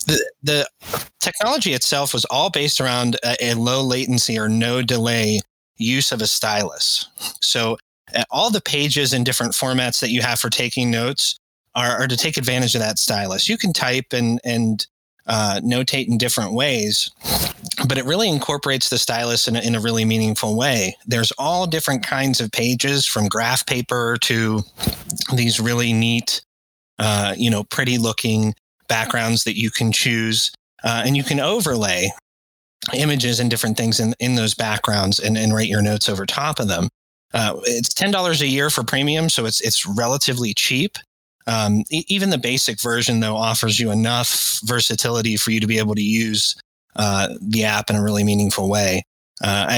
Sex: male